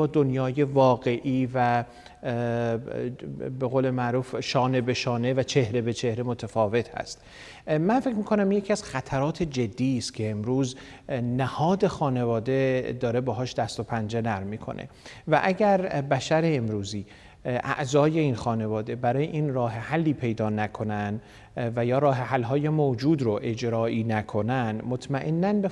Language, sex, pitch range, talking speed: Persian, male, 120-145 Hz, 135 wpm